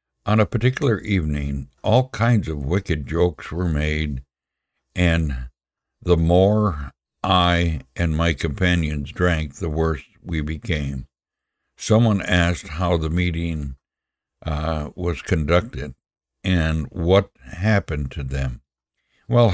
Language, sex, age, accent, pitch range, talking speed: English, male, 60-79, American, 70-90 Hz, 115 wpm